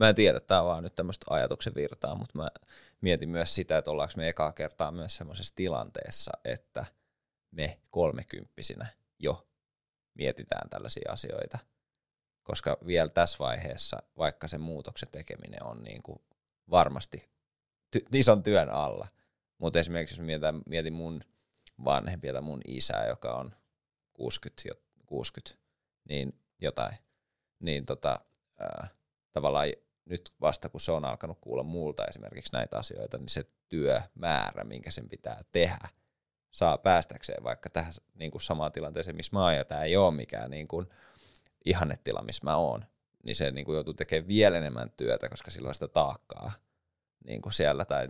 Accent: native